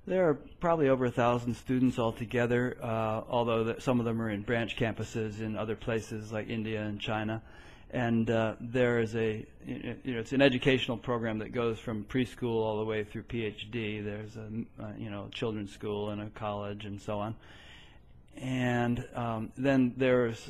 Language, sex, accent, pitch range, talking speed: English, male, American, 110-120 Hz, 180 wpm